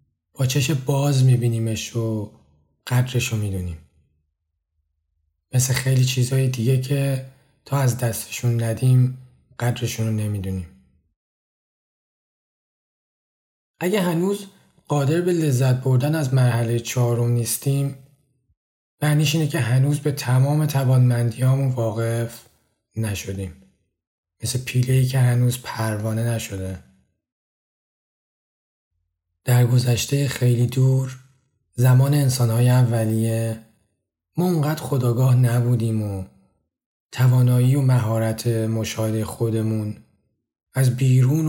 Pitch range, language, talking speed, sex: 110-130 Hz, Persian, 90 wpm, male